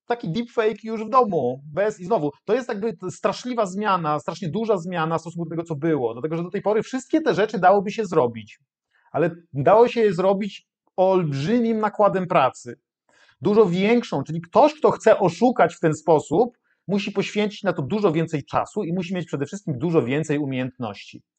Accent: native